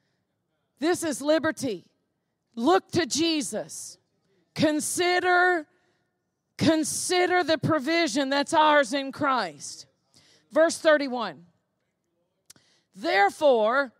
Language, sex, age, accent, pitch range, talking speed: English, female, 40-59, American, 245-315 Hz, 75 wpm